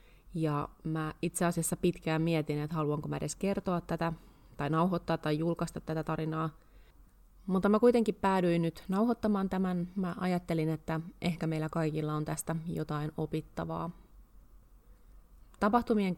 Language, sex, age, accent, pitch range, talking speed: Finnish, female, 30-49, native, 155-175 Hz, 135 wpm